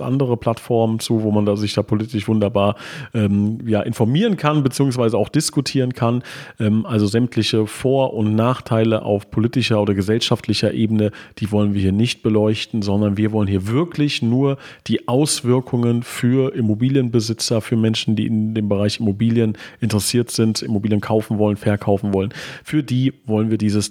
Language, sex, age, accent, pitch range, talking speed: German, male, 40-59, German, 105-125 Hz, 160 wpm